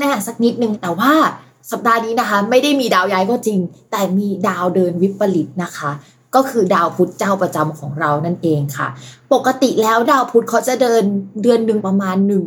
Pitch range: 180-235 Hz